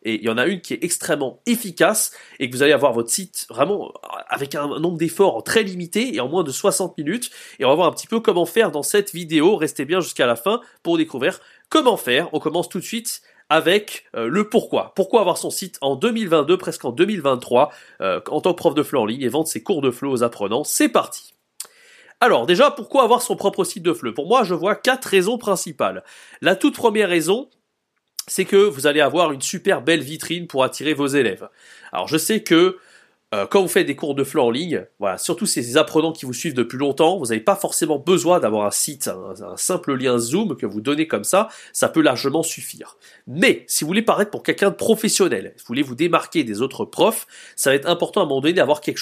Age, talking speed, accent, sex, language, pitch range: 30-49, 235 wpm, French, male, French, 145-205 Hz